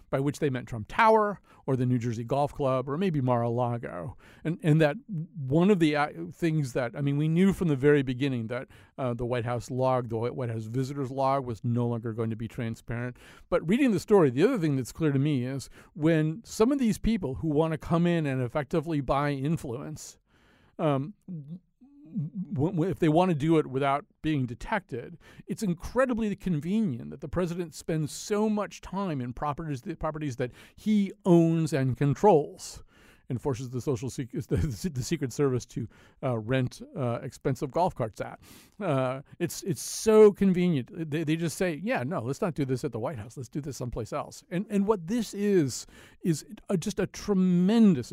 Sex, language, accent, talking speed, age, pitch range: male, English, American, 190 wpm, 40-59, 130-175 Hz